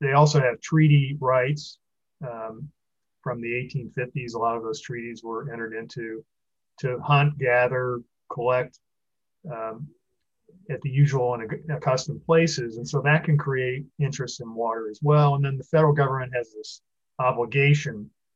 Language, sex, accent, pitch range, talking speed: English, male, American, 120-150 Hz, 150 wpm